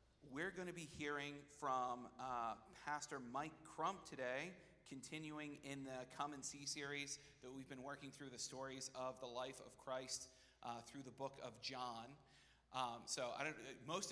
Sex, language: male, English